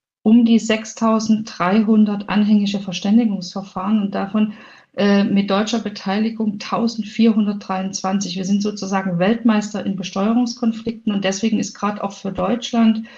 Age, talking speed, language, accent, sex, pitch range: 50-69, 115 wpm, German, German, female, 190-220 Hz